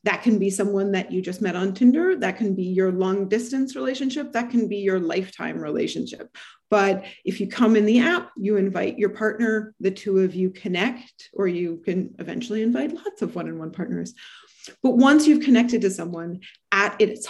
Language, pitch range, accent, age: English, 185-230 Hz, American, 30-49